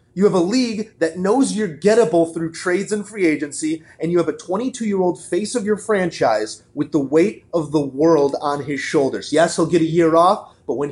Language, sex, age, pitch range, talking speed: English, male, 30-49, 165-220 Hz, 225 wpm